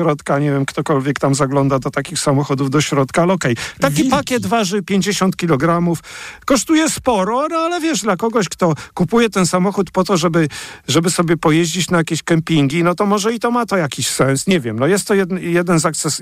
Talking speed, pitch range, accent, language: 205 wpm, 145-185 Hz, native, Polish